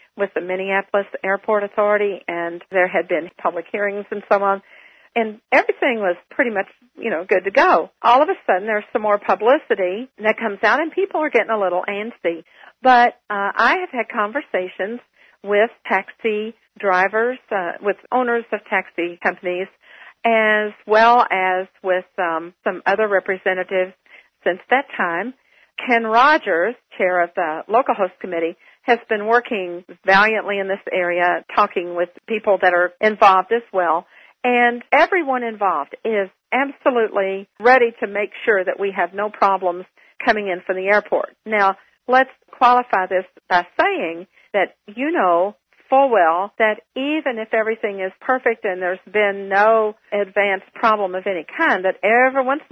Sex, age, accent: female, 50-69, American